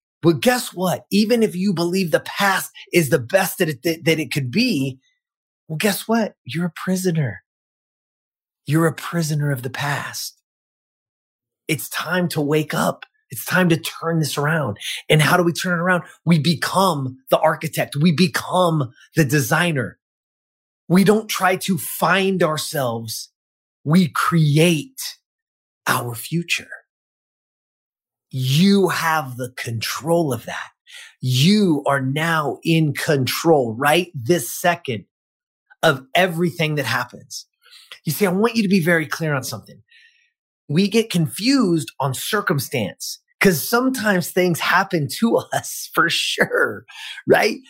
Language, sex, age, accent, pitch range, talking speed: English, male, 30-49, American, 145-195 Hz, 135 wpm